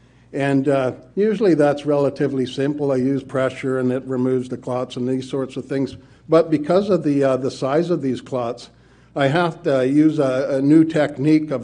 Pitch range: 130-150 Hz